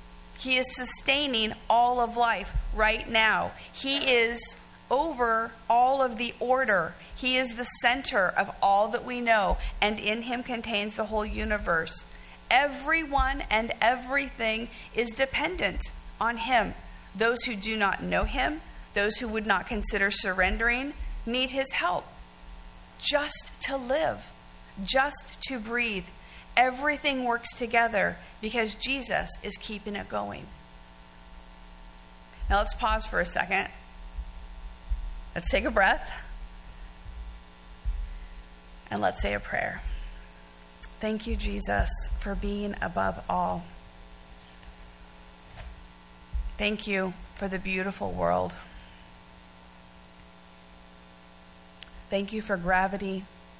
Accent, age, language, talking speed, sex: American, 50-69, English, 110 wpm, female